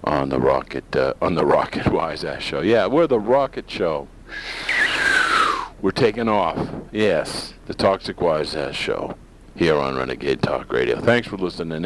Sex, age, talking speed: male, 50-69, 150 wpm